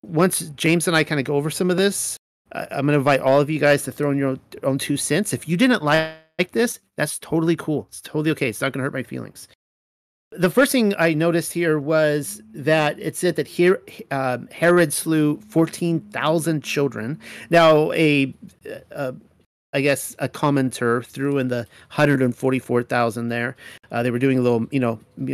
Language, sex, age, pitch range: English, male, 40-59, 135-165 Hz